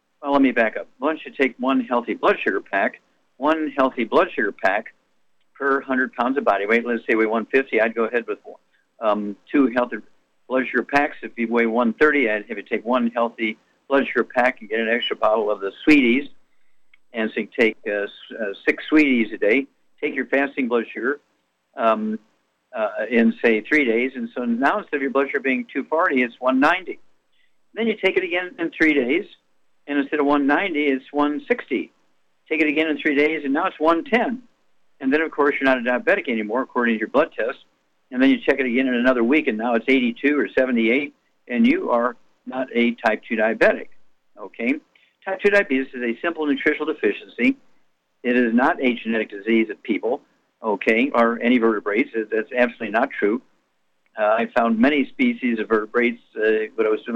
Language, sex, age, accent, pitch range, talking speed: English, male, 60-79, American, 115-155 Hz, 200 wpm